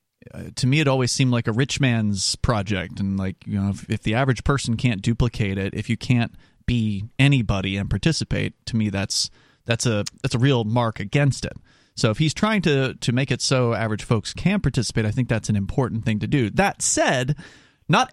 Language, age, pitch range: English, 30-49, 120-185 Hz